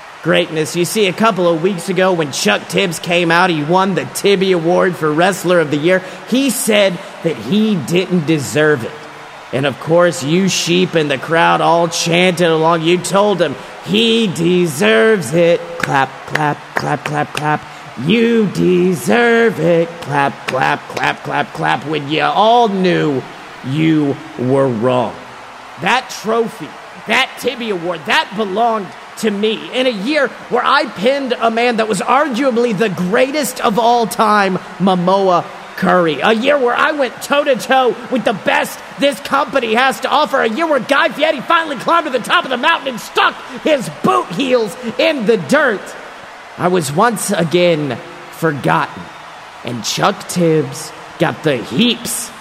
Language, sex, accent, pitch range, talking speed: English, male, American, 165-235 Hz, 160 wpm